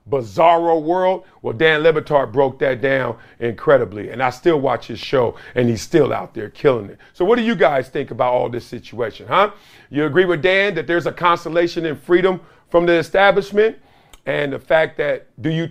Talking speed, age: 200 wpm, 50-69